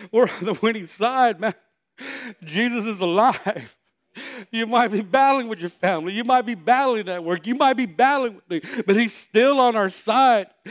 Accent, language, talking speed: American, English, 190 wpm